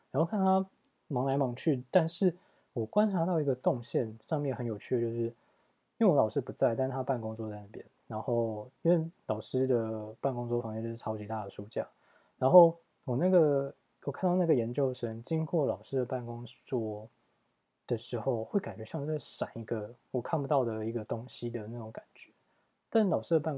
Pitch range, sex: 110-140 Hz, male